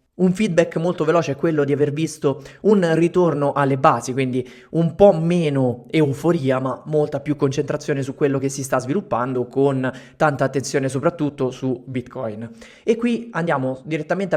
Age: 20-39